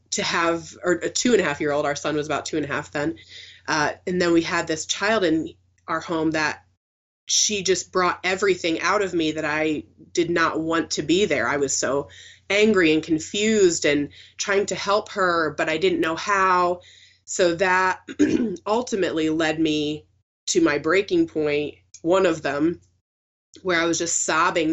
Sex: female